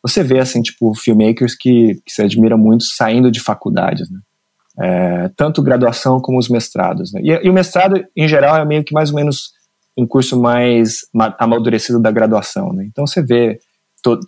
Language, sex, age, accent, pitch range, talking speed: Portuguese, male, 20-39, Brazilian, 105-135 Hz, 190 wpm